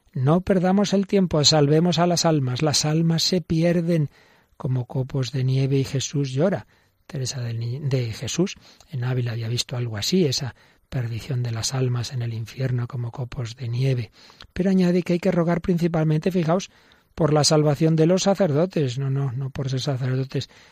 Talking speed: 175 wpm